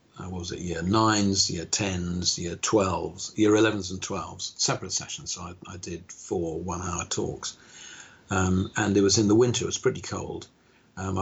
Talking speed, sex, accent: 180 wpm, male, British